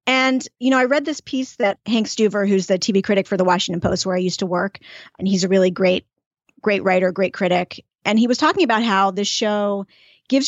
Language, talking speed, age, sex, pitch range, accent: English, 235 wpm, 30-49, female, 190-235 Hz, American